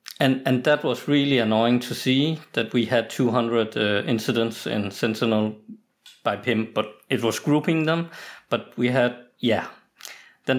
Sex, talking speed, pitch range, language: male, 160 wpm, 115-130 Hz, English